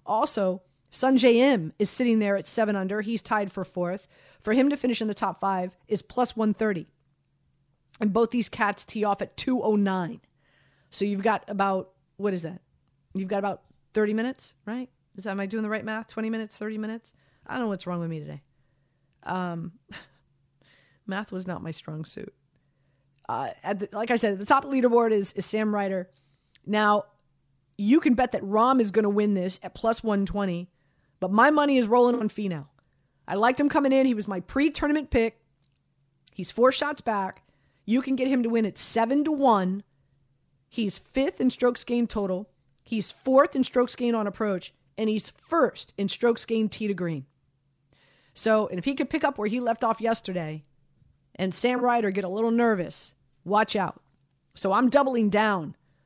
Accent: American